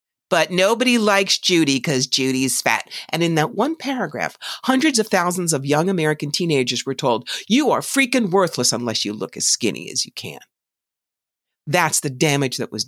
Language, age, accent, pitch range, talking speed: English, 50-69, American, 140-180 Hz, 175 wpm